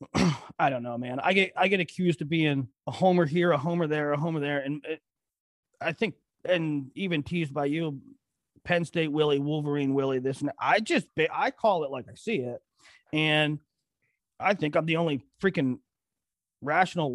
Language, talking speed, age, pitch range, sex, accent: English, 185 wpm, 30-49, 140-180 Hz, male, American